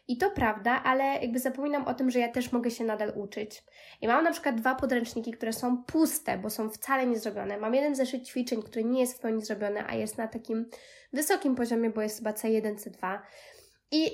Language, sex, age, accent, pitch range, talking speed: Polish, female, 20-39, native, 225-270 Hz, 210 wpm